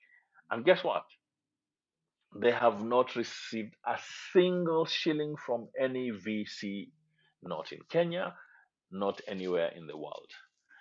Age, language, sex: 50-69, English, male